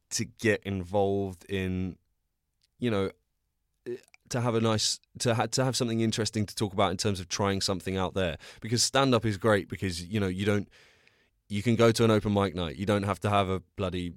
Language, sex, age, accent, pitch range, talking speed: English, male, 20-39, British, 90-110 Hz, 210 wpm